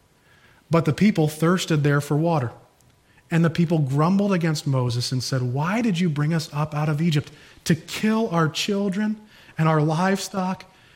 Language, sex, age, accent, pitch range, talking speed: English, male, 30-49, American, 150-215 Hz, 170 wpm